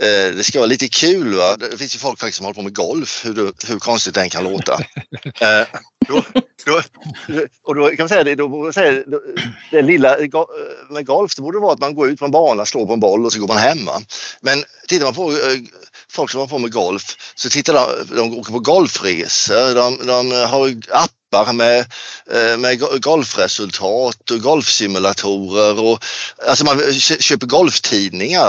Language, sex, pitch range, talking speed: Swedish, male, 115-170 Hz, 185 wpm